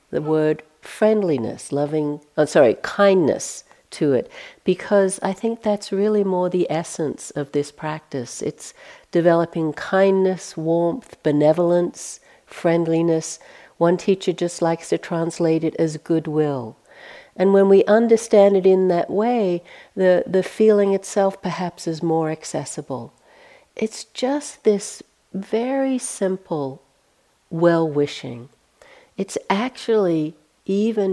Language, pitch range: English, 150-195 Hz